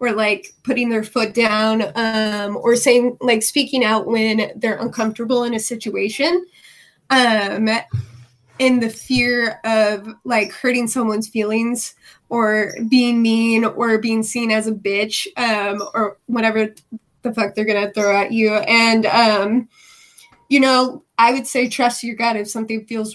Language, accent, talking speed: English, American, 155 wpm